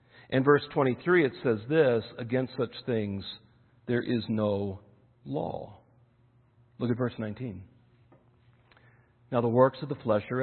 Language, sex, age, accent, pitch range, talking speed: English, male, 50-69, American, 120-150 Hz, 140 wpm